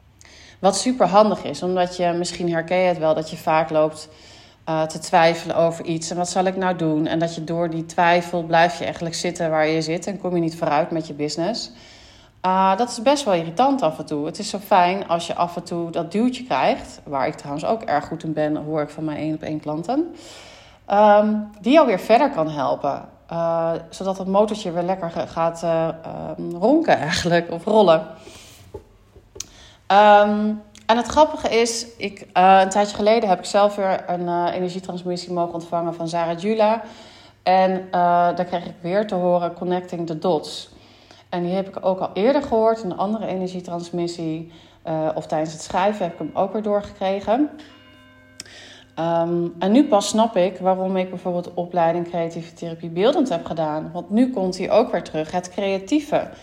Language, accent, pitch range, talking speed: Dutch, Dutch, 165-200 Hz, 195 wpm